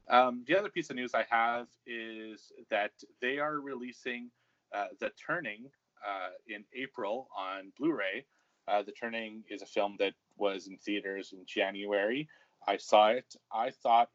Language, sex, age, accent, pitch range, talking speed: English, male, 30-49, American, 100-120 Hz, 160 wpm